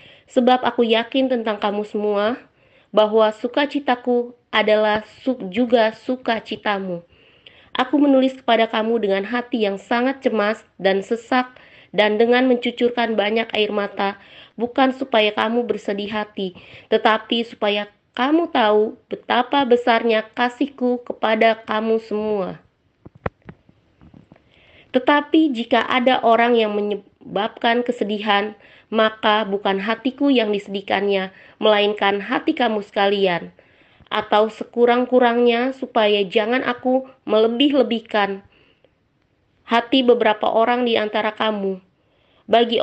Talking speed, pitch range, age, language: 100 wpm, 210-245 Hz, 20-39, Indonesian